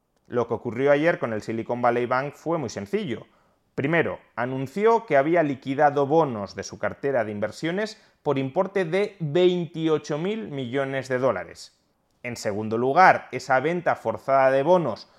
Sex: male